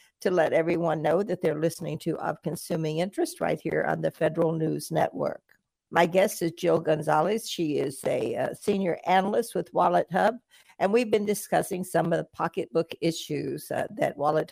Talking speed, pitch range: 180 wpm, 165-210 Hz